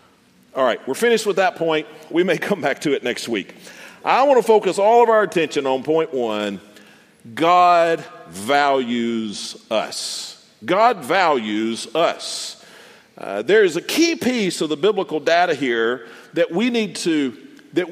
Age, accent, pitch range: 50-69, American, 150-230 Hz